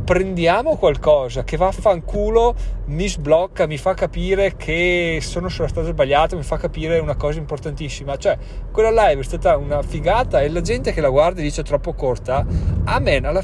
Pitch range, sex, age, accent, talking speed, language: 125-170 Hz, male, 30-49, native, 185 wpm, Italian